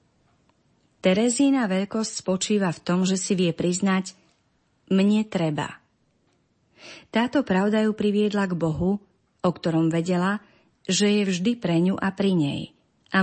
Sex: female